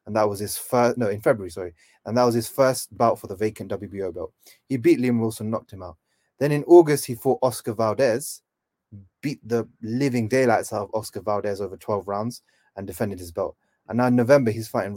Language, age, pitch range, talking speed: English, 30-49, 105-125 Hz, 220 wpm